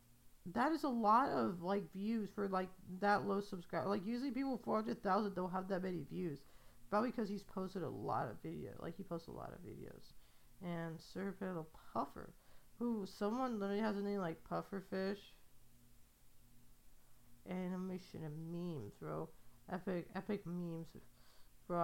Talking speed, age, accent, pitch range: 155 wpm, 40-59, American, 160-205 Hz